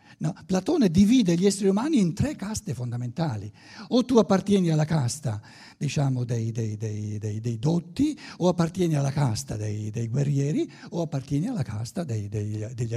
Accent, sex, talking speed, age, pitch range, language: native, male, 165 wpm, 60-79, 125-195 Hz, Italian